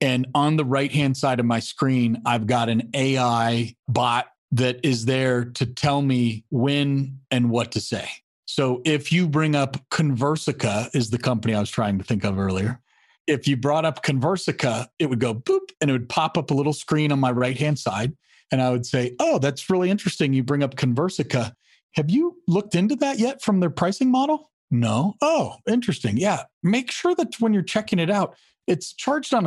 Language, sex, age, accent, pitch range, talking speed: English, male, 40-59, American, 125-185 Hz, 200 wpm